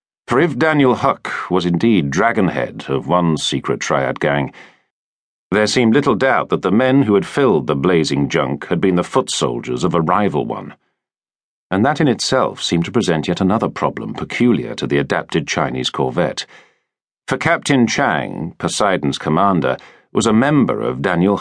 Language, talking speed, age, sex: English, 165 wpm, 50-69, male